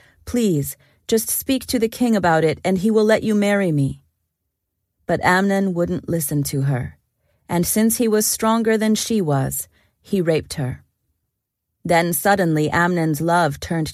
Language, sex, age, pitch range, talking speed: English, female, 40-59, 145-205 Hz, 160 wpm